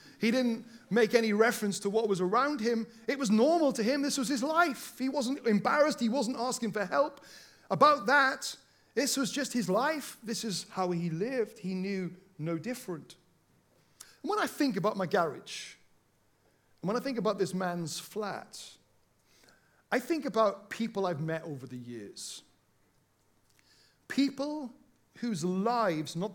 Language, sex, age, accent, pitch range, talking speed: English, male, 40-59, British, 175-240 Hz, 155 wpm